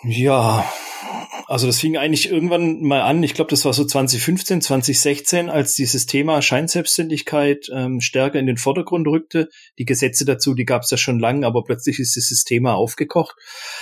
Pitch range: 125-150 Hz